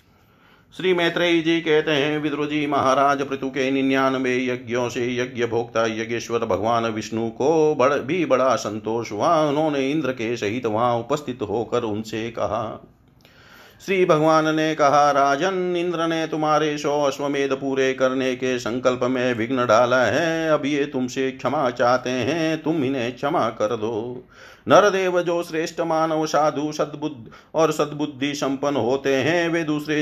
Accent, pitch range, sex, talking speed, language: native, 125-150 Hz, male, 115 wpm, Hindi